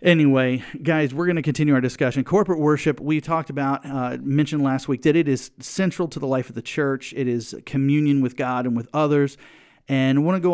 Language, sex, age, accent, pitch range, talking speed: English, male, 40-59, American, 120-150 Hz, 230 wpm